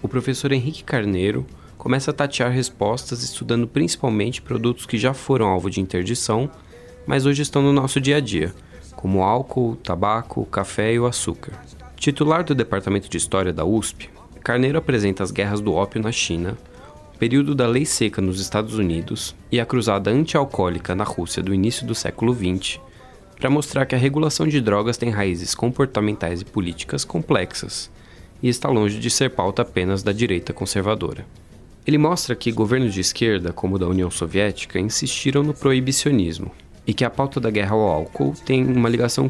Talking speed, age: 175 wpm, 20-39